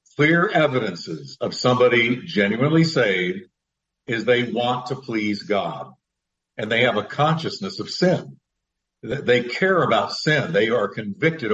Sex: male